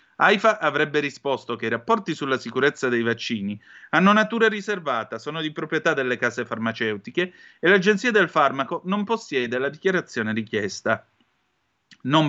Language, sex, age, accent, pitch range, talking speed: Italian, male, 30-49, native, 120-170 Hz, 140 wpm